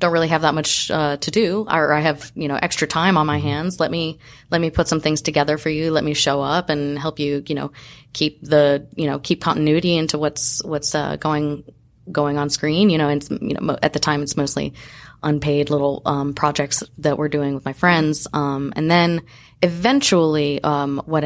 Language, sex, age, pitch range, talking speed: English, female, 20-39, 145-160 Hz, 225 wpm